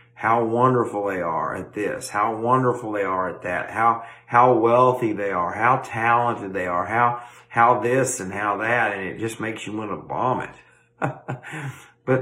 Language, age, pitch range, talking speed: English, 50-69, 105-130 Hz, 175 wpm